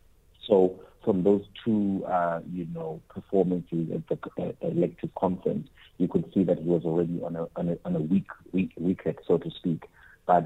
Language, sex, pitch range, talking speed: English, male, 80-90 Hz, 185 wpm